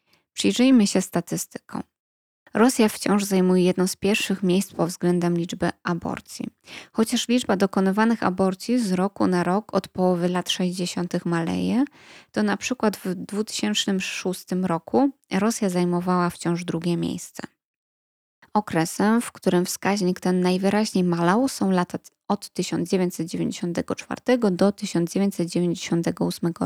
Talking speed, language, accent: 115 wpm, Polish, native